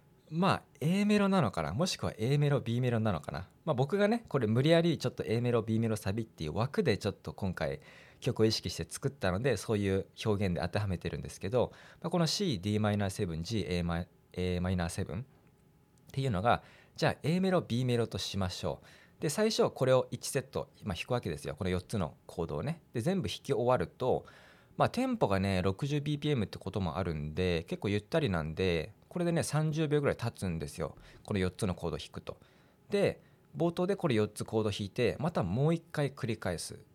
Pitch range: 90-155 Hz